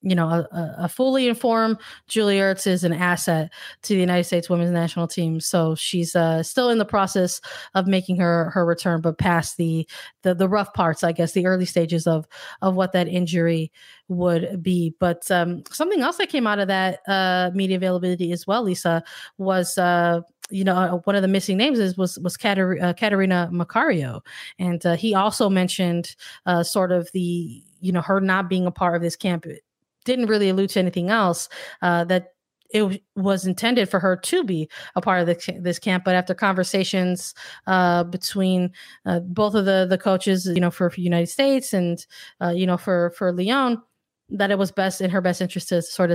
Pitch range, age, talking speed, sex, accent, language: 170-195 Hz, 20-39, 200 wpm, female, American, English